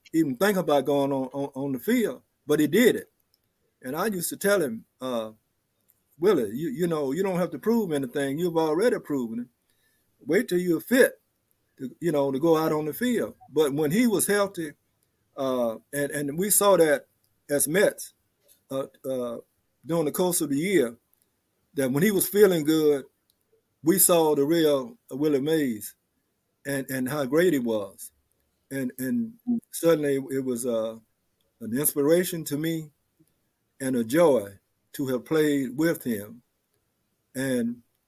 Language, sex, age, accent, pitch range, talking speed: English, male, 50-69, American, 125-160 Hz, 165 wpm